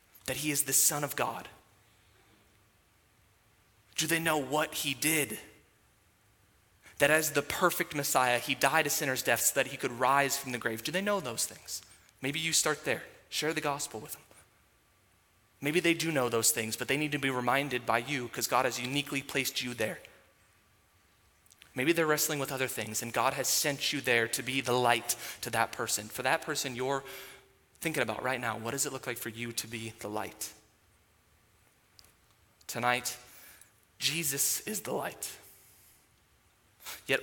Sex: male